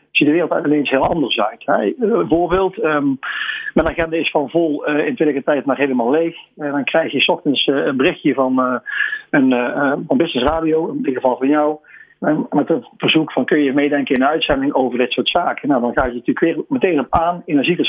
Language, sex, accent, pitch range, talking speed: Dutch, male, Dutch, 130-160 Hz, 230 wpm